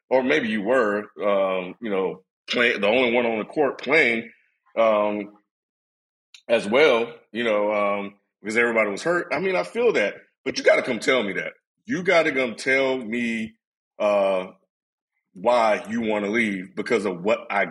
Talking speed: 180 wpm